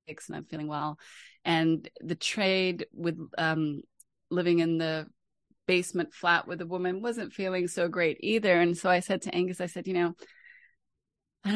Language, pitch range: English, 170-195 Hz